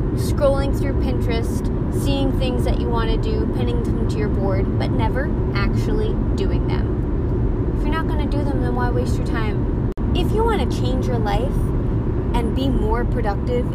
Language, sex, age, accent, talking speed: English, female, 20-39, American, 190 wpm